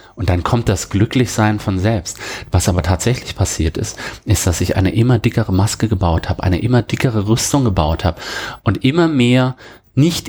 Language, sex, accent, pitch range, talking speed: German, male, German, 95-125 Hz, 180 wpm